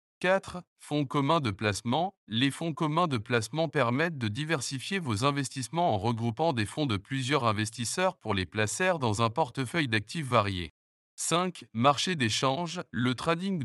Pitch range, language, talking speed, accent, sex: 110-170 Hz, French, 155 wpm, French, male